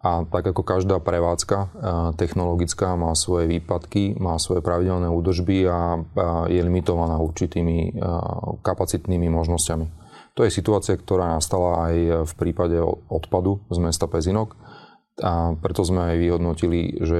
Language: Slovak